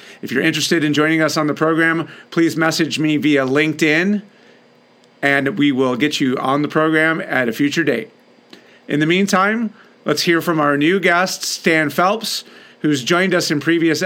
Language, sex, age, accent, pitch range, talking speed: English, male, 40-59, American, 145-170 Hz, 180 wpm